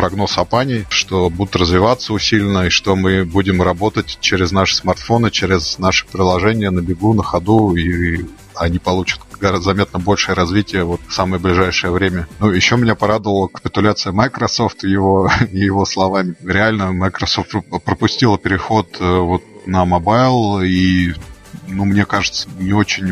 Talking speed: 150 wpm